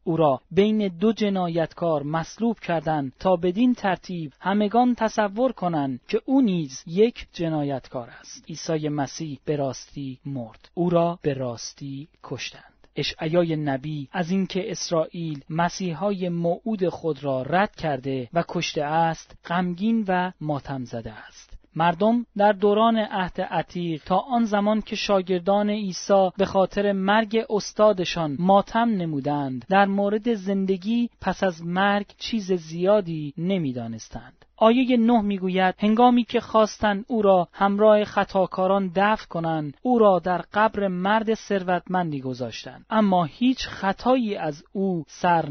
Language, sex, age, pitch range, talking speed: Persian, male, 30-49, 160-210 Hz, 130 wpm